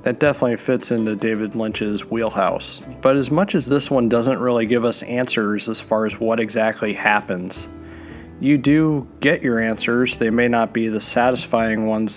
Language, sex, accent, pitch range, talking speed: English, male, American, 110-125 Hz, 180 wpm